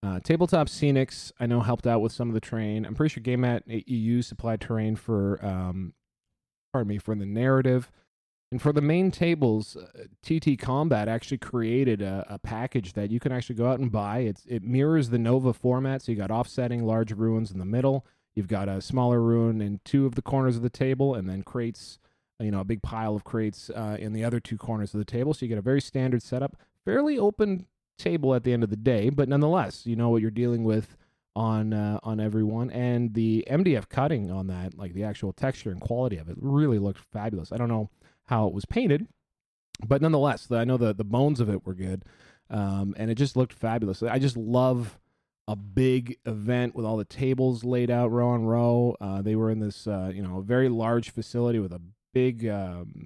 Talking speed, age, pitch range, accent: 220 wpm, 30-49, 105-130 Hz, American